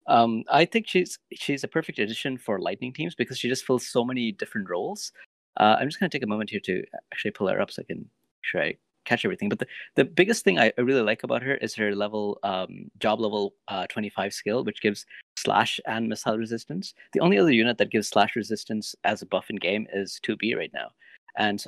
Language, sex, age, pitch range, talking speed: English, male, 30-49, 105-135 Hz, 230 wpm